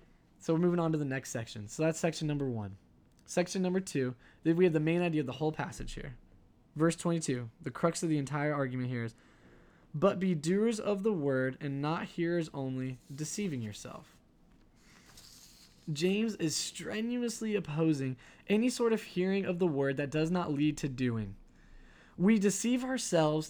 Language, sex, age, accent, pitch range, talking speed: English, male, 10-29, American, 145-180 Hz, 175 wpm